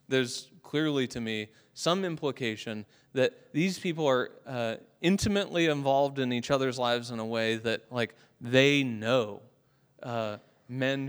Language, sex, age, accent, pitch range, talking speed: English, male, 30-49, American, 120-140 Hz, 140 wpm